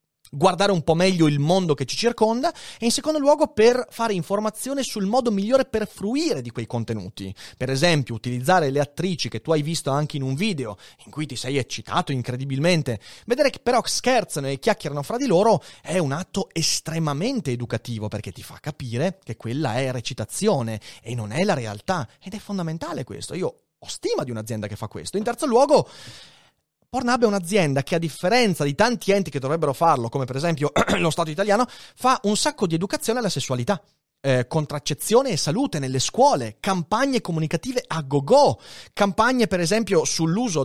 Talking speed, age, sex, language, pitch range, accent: 185 wpm, 30-49, male, Italian, 135-210 Hz, native